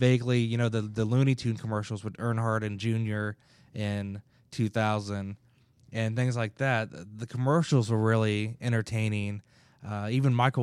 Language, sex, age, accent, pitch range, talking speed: English, male, 20-39, American, 110-125 Hz, 145 wpm